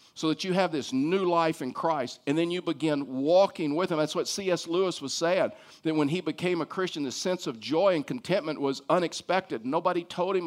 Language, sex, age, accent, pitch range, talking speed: English, male, 50-69, American, 150-195 Hz, 225 wpm